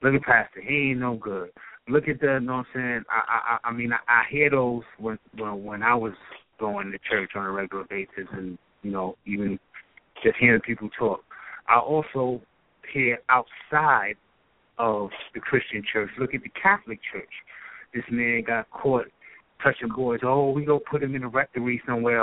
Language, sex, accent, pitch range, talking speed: English, male, American, 110-135 Hz, 195 wpm